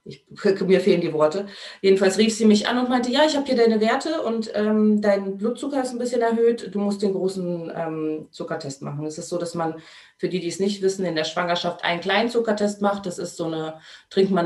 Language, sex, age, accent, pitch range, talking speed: German, female, 30-49, German, 175-215 Hz, 235 wpm